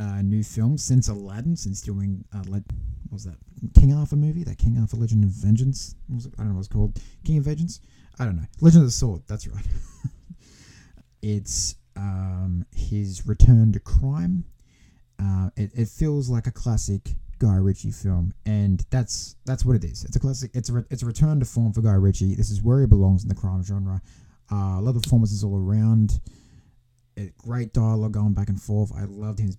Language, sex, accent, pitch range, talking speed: English, male, Australian, 95-120 Hz, 205 wpm